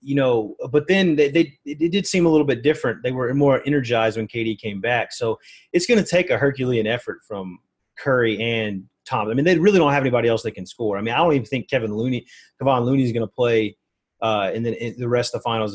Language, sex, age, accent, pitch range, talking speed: English, male, 30-49, American, 110-150 Hz, 250 wpm